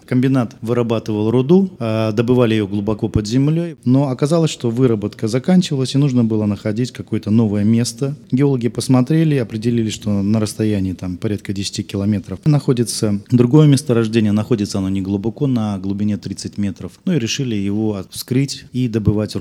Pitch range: 100-125 Hz